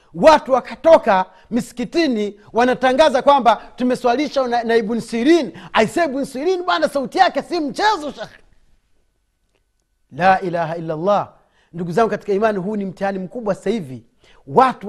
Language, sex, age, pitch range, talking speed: Swahili, male, 40-59, 205-285 Hz, 115 wpm